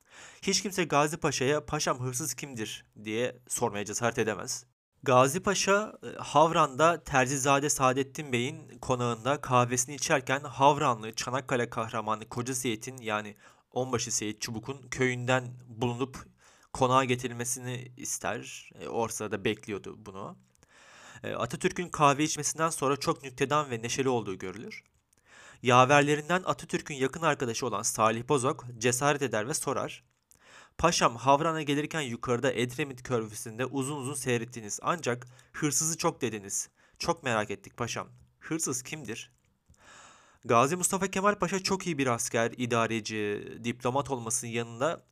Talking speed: 120 wpm